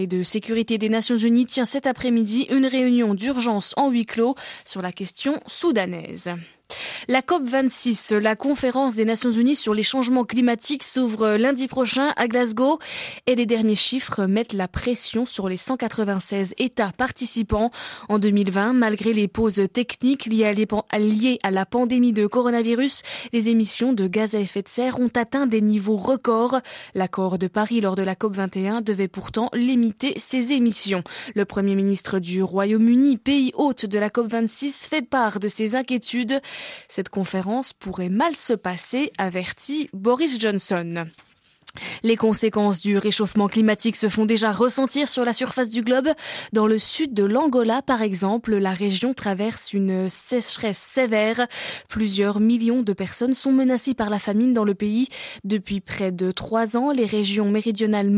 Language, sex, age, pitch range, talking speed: French, female, 20-39, 200-250 Hz, 160 wpm